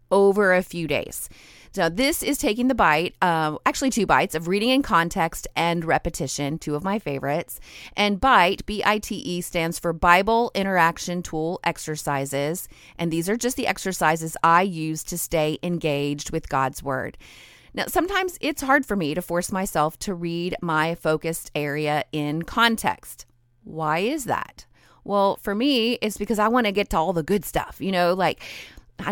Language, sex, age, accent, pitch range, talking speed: English, female, 30-49, American, 155-205 Hz, 175 wpm